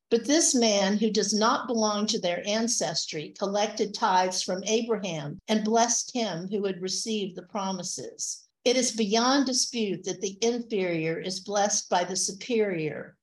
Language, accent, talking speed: English, American, 155 wpm